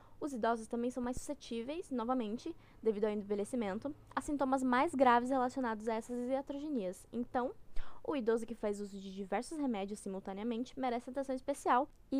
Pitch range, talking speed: 210-260 Hz, 155 wpm